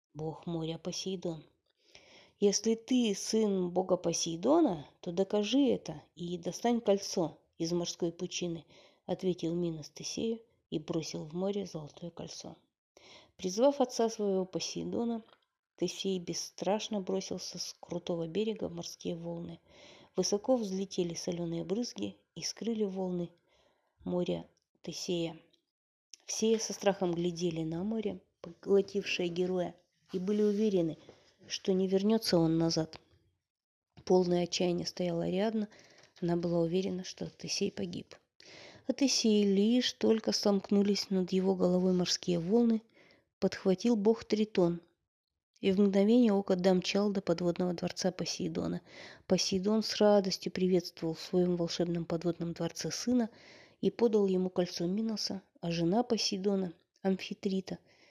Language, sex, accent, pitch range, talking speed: Russian, female, native, 170-205 Hz, 115 wpm